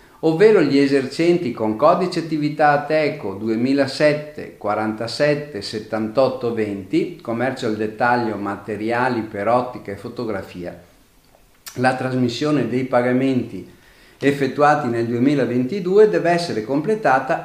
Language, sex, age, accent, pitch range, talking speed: Italian, male, 50-69, native, 110-150 Hz, 100 wpm